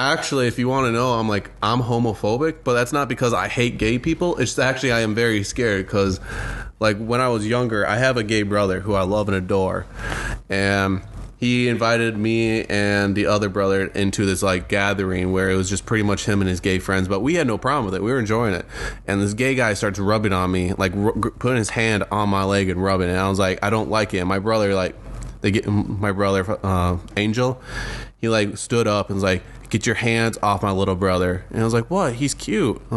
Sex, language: male, English